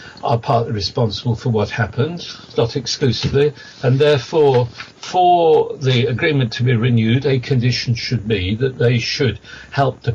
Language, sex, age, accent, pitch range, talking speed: English, male, 50-69, British, 115-140 Hz, 150 wpm